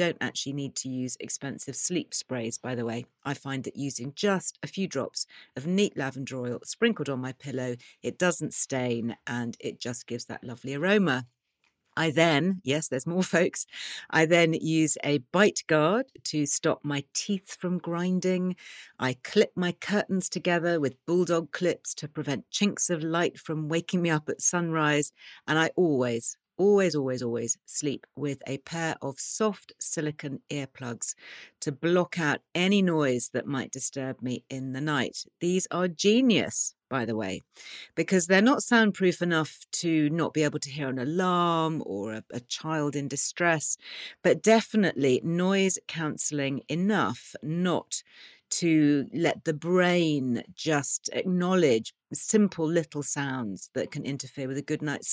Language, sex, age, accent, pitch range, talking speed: English, female, 40-59, British, 135-175 Hz, 160 wpm